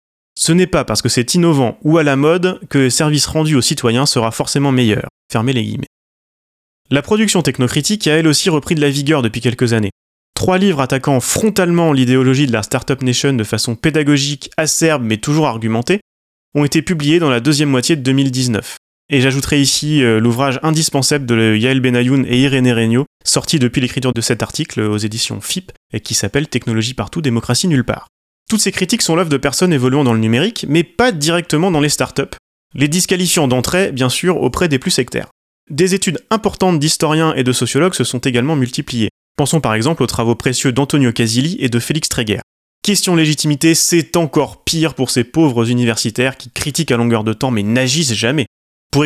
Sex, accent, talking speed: male, French, 190 wpm